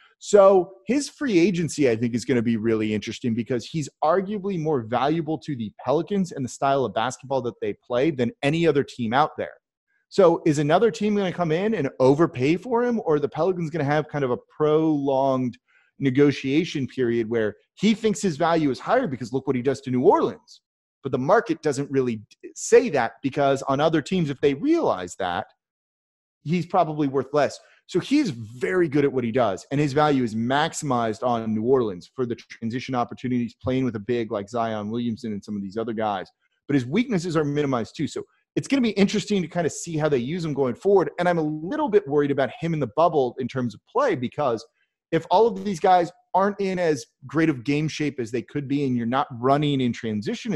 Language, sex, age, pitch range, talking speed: English, male, 30-49, 125-175 Hz, 220 wpm